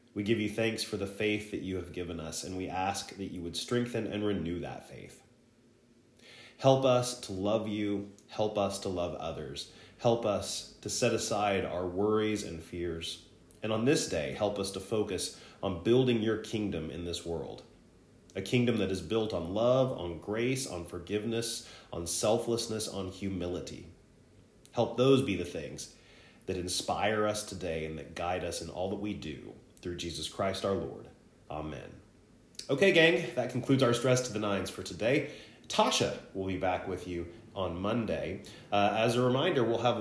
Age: 30-49